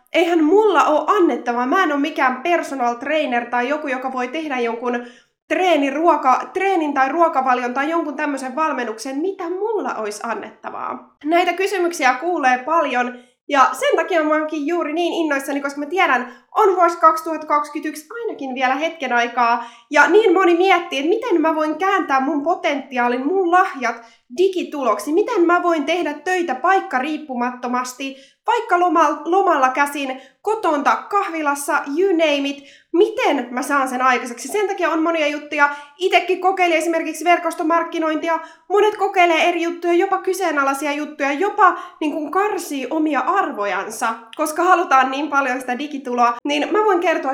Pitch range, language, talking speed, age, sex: 260-350 Hz, Finnish, 145 wpm, 20-39, female